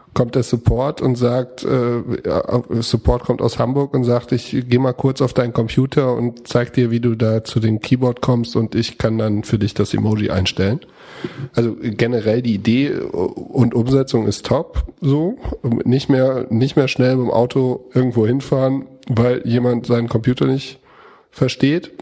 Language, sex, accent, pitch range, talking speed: German, male, German, 115-130 Hz, 170 wpm